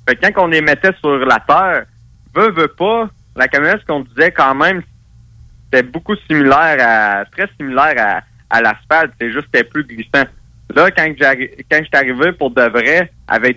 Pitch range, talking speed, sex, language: 120-150 Hz, 190 wpm, male, French